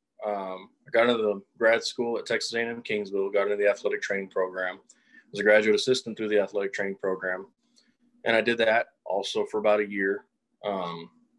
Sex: male